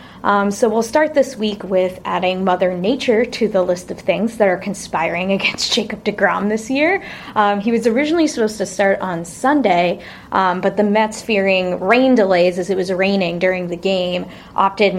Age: 20-39